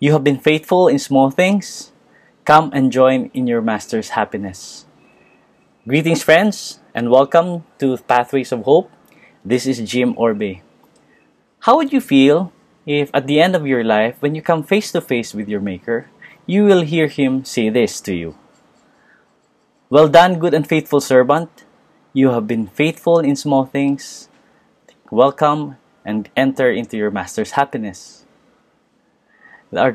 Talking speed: 150 wpm